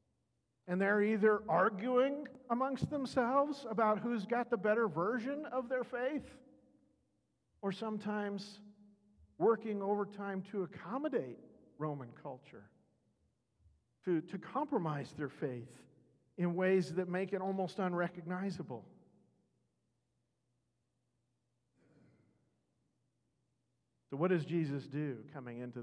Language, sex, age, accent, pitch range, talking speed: English, male, 50-69, American, 140-205 Hz, 100 wpm